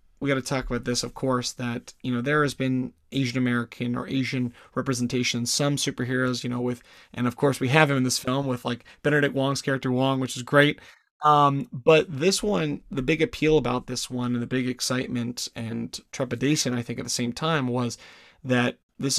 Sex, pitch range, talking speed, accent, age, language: male, 125-140 Hz, 205 wpm, American, 30-49, English